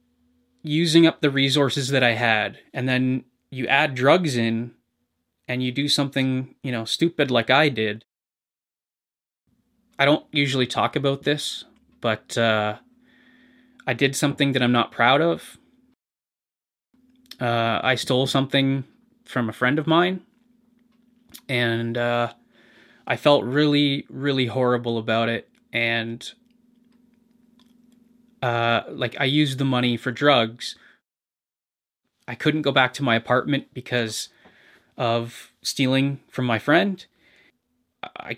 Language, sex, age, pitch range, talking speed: English, male, 20-39, 120-150 Hz, 125 wpm